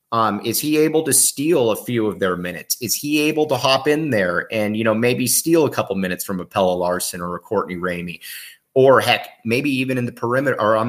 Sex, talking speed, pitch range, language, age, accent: male, 235 wpm, 110-145 Hz, English, 30-49, American